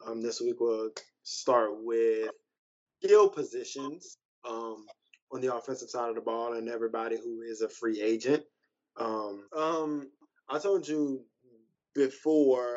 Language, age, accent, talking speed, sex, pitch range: English, 20-39, American, 135 wpm, male, 120-145 Hz